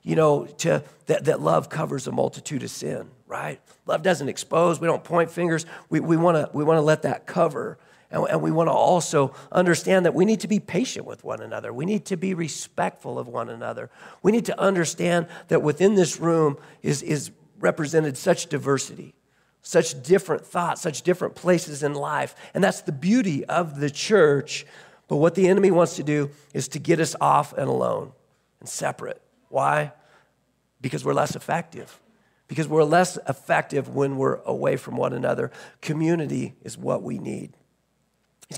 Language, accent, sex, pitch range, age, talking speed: English, American, male, 150-180 Hz, 40-59, 180 wpm